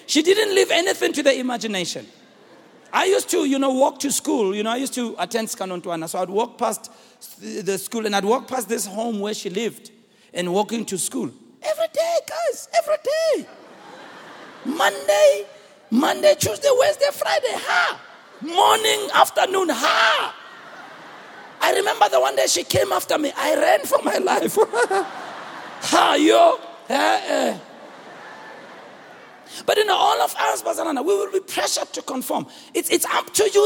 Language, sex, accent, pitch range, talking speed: English, male, South African, 225-330 Hz, 160 wpm